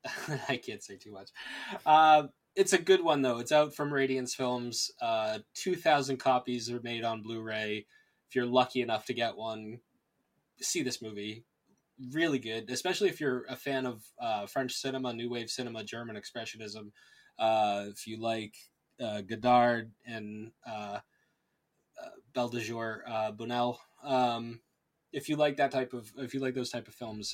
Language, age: English, 20-39